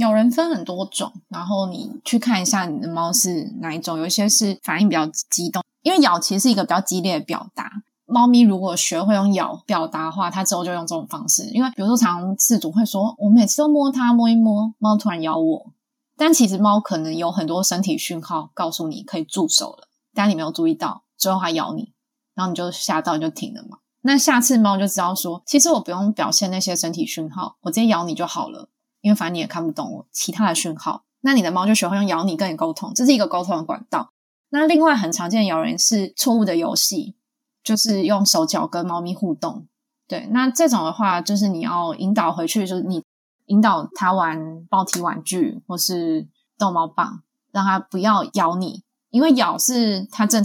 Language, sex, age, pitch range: Chinese, female, 20-39, 175-235 Hz